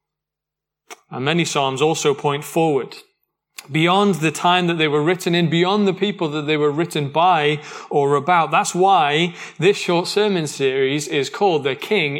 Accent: British